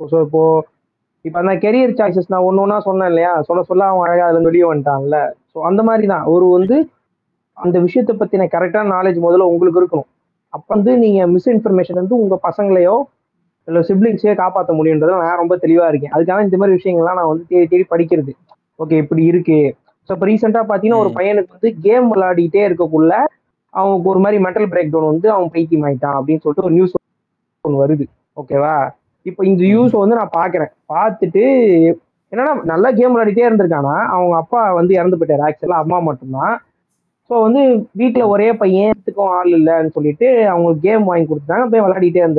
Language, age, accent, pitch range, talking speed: Tamil, 20-39, native, 160-205 Hz, 170 wpm